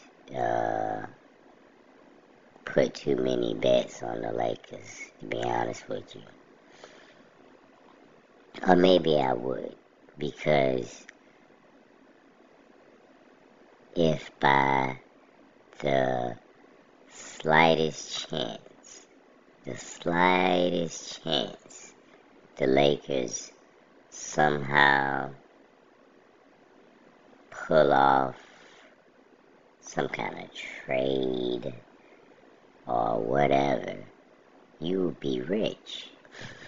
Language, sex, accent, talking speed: English, male, American, 65 wpm